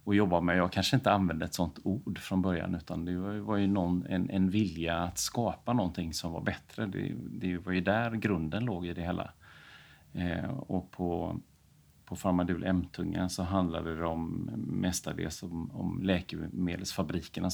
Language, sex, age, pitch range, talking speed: Swedish, male, 30-49, 85-95 Hz, 180 wpm